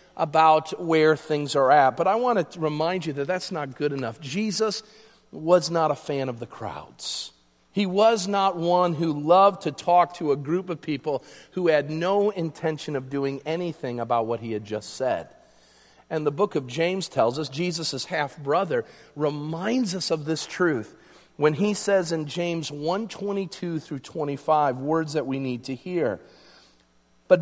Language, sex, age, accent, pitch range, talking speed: English, male, 40-59, American, 150-205 Hz, 175 wpm